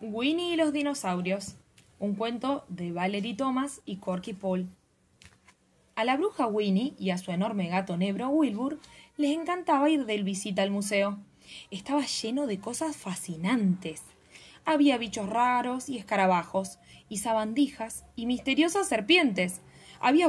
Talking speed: 135 wpm